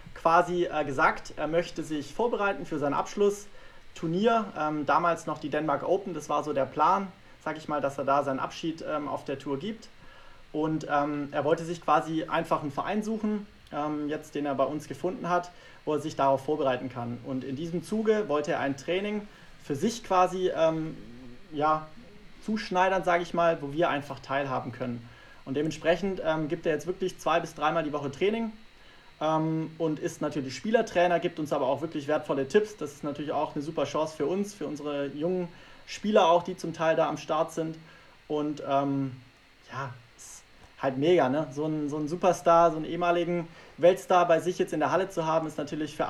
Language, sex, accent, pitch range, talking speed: German, male, German, 145-175 Hz, 190 wpm